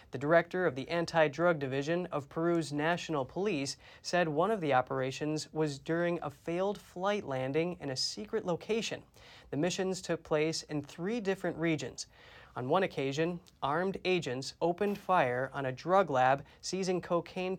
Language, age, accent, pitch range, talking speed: English, 30-49, American, 145-175 Hz, 155 wpm